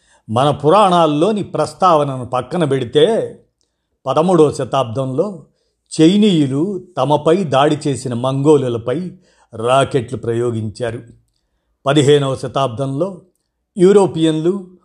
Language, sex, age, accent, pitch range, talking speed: Telugu, male, 50-69, native, 120-165 Hz, 70 wpm